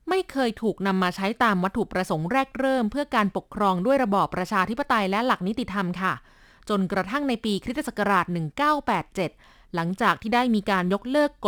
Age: 20-39